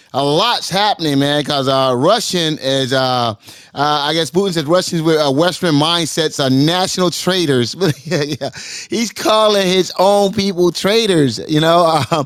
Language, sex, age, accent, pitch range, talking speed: English, male, 30-49, American, 150-195 Hz, 165 wpm